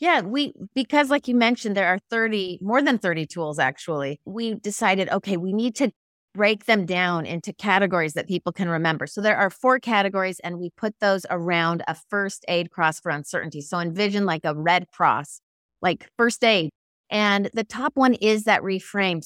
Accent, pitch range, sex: American, 175-220 Hz, female